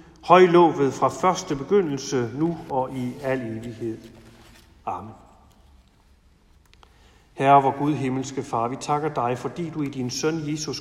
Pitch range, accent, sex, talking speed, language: 120-160 Hz, native, male, 140 wpm, Danish